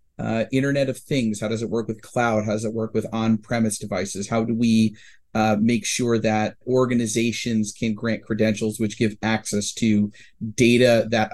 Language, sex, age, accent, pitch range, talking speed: English, male, 30-49, American, 105-115 Hz, 180 wpm